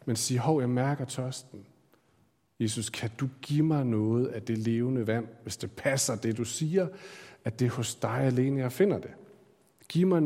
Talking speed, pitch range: 195 wpm, 120-160 Hz